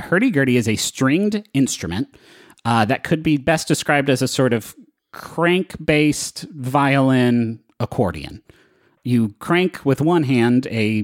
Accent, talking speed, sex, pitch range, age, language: American, 130 wpm, male, 110-140 Hz, 30-49, English